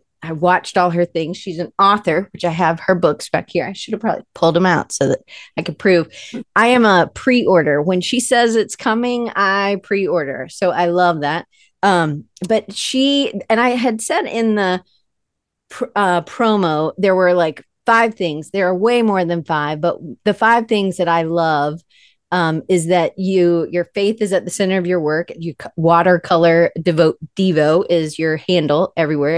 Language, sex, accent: English, female, American